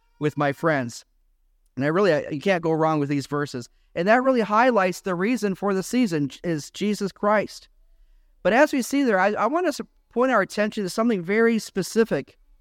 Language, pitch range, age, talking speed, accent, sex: English, 170-220 Hz, 40-59, 205 wpm, American, male